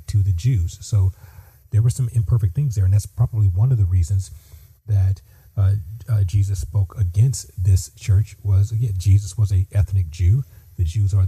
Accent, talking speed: American, 180 wpm